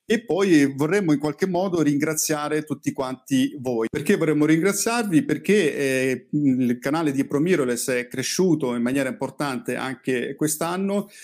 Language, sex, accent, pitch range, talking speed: Italian, male, native, 130-160 Hz, 140 wpm